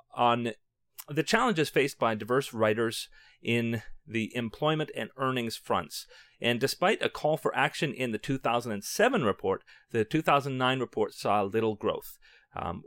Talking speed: 140 wpm